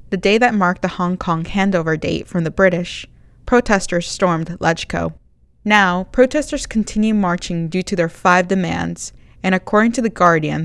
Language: English